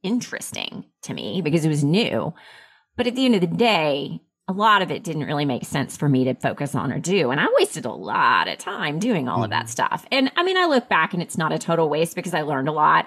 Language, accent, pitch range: English, American, 150-205 Hz